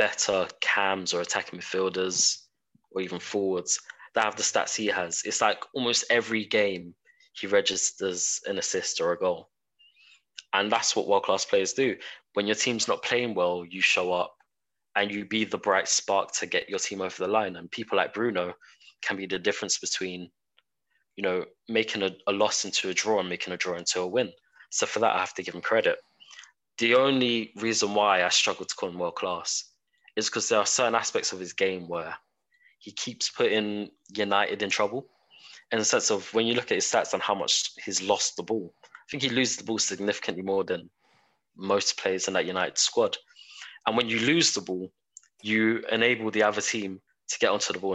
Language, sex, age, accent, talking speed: English, male, 20-39, British, 205 wpm